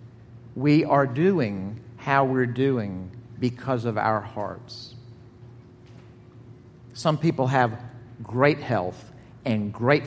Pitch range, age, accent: 120-140 Hz, 50-69, American